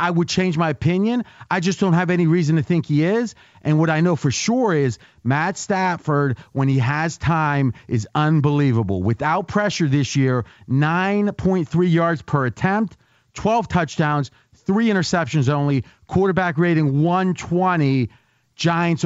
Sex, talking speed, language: male, 150 wpm, English